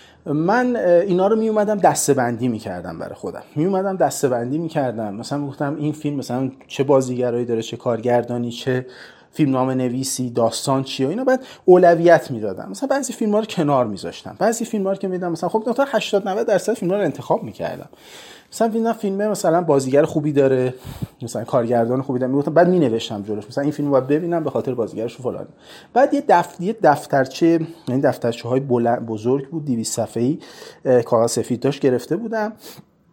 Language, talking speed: Persian, 175 wpm